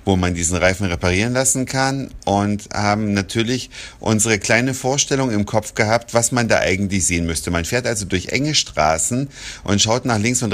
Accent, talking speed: German, 190 wpm